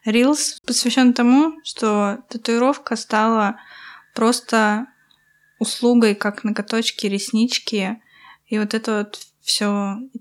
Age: 20-39